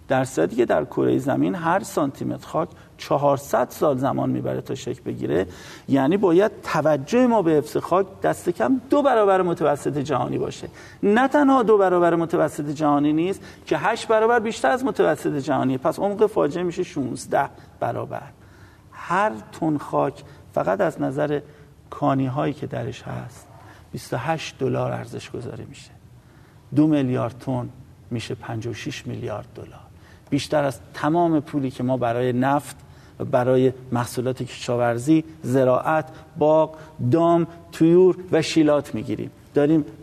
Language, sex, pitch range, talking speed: Persian, male, 125-160 Hz, 135 wpm